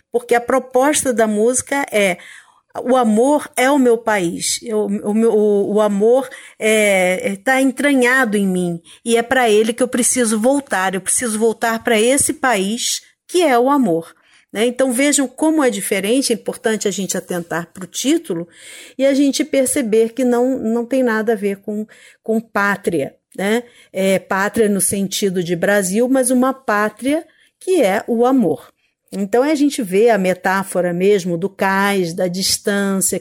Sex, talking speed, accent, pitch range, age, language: female, 160 wpm, Brazilian, 195-245 Hz, 50-69, Portuguese